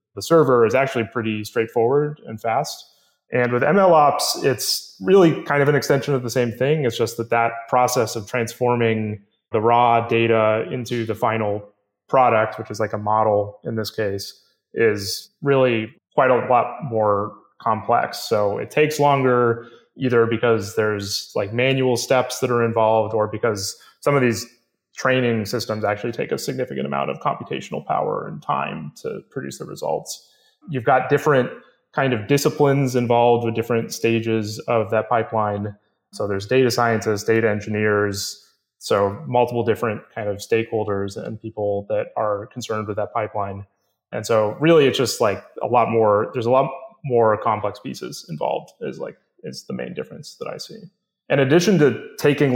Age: 20-39